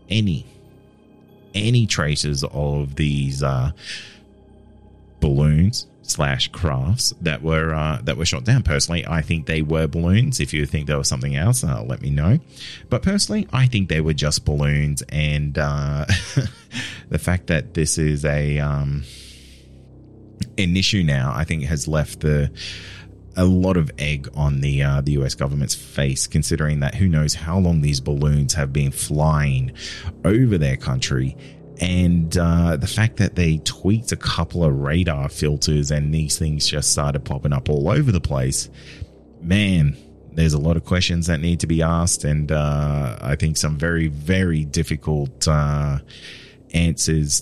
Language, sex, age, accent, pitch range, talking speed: English, male, 30-49, Australian, 75-90 Hz, 160 wpm